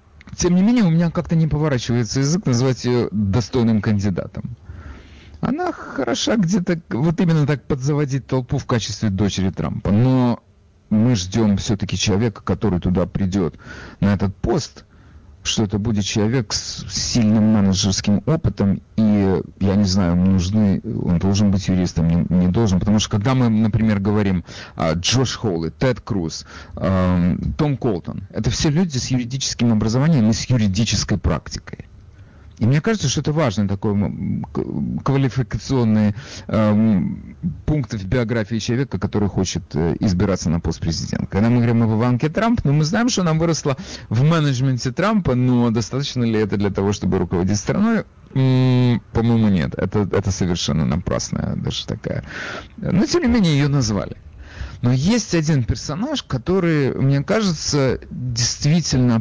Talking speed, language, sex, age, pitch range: 145 wpm, Russian, male, 40-59, 100-135 Hz